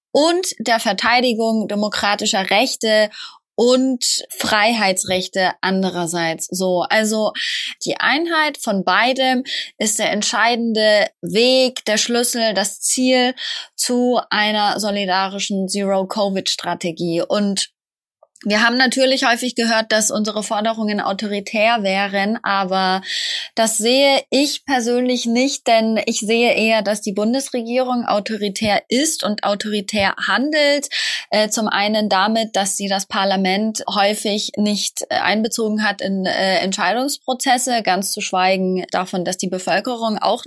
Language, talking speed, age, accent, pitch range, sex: German, 115 wpm, 20-39, German, 200-245 Hz, female